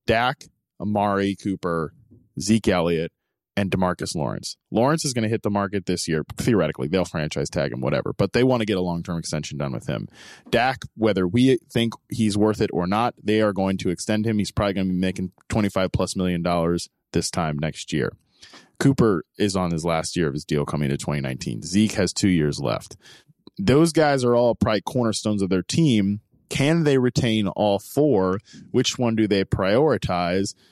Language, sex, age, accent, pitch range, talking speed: English, male, 20-39, American, 90-115 Hz, 195 wpm